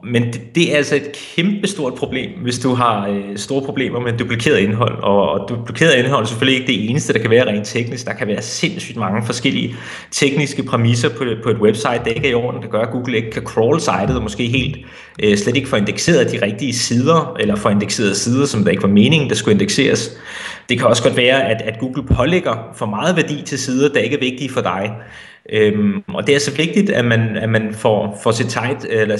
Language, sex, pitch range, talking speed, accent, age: Danish, male, 110-140 Hz, 215 wpm, native, 30-49